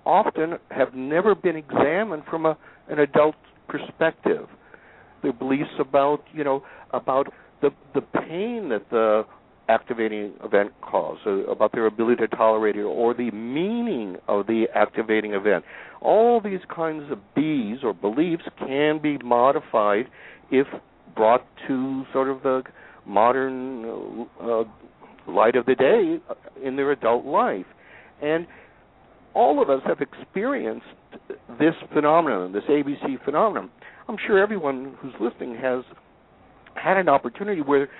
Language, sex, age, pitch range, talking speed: English, male, 60-79, 120-175 Hz, 135 wpm